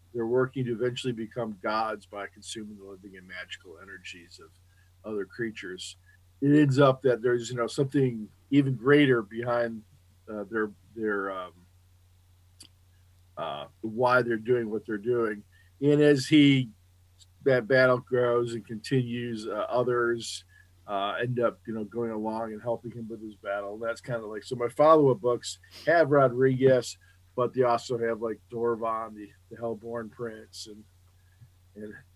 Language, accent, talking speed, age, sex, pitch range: English, American, 155 wpm, 50-69, male, 95-125 Hz